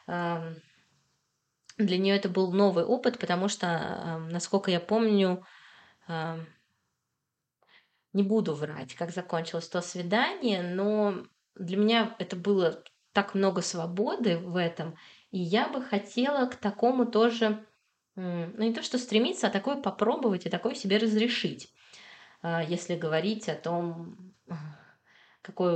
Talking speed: 120 wpm